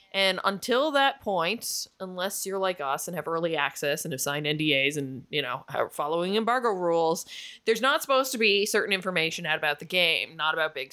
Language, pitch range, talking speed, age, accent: English, 170-240 Hz, 200 wpm, 20-39, American